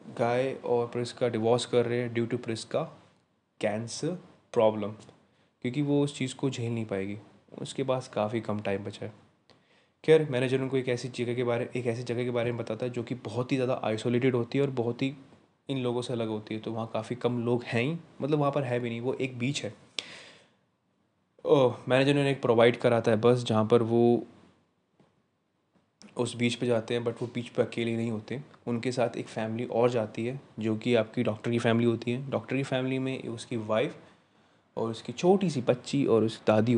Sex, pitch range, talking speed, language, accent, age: male, 115-125 Hz, 210 wpm, Hindi, native, 20-39